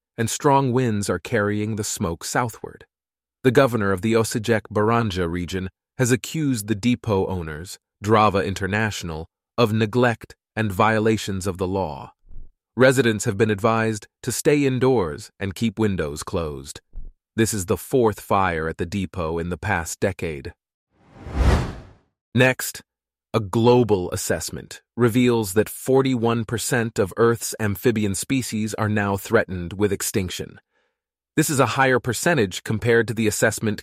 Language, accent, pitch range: English, American, 95-120 Hz